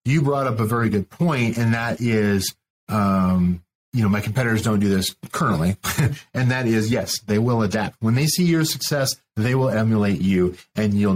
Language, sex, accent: English, male, American